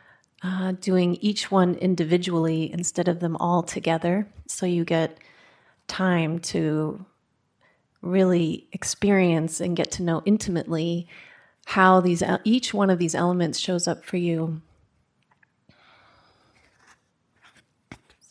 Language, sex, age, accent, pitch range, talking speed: English, female, 30-49, American, 170-195 Hz, 110 wpm